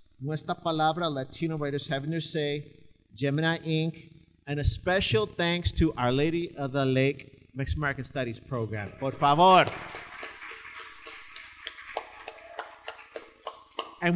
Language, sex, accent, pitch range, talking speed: English, male, American, 140-195 Hz, 110 wpm